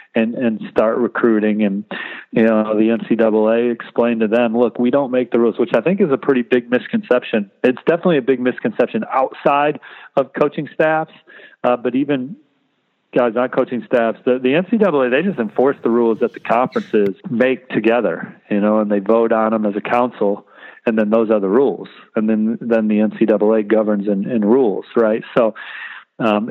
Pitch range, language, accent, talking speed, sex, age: 110-125 Hz, English, American, 185 wpm, male, 40-59